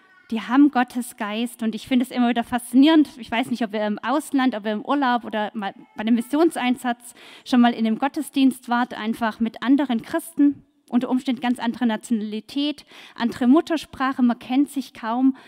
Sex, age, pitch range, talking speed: female, 20-39, 215-270 Hz, 180 wpm